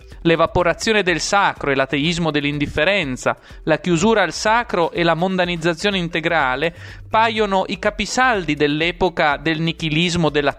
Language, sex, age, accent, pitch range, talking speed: Italian, male, 30-49, native, 145-190 Hz, 120 wpm